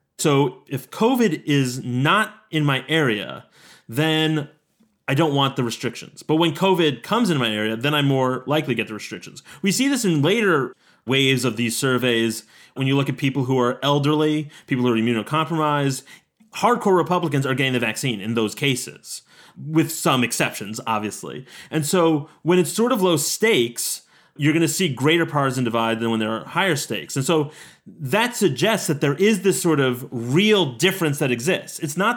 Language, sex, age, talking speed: English, male, 30-49, 185 wpm